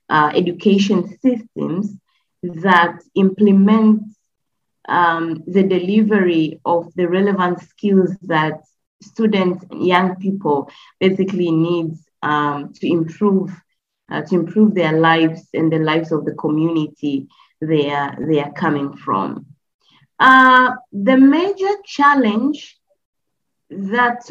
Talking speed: 110 wpm